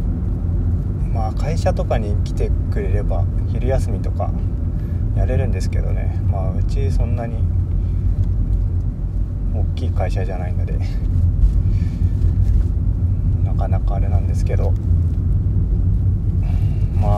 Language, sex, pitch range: Japanese, male, 85-95 Hz